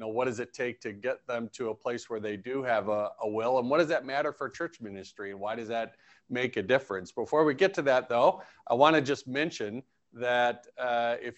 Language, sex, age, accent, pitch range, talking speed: English, male, 50-69, American, 115-140 Hz, 245 wpm